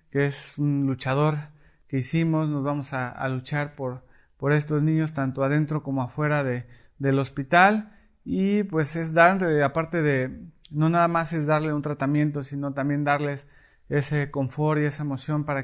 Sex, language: male, Spanish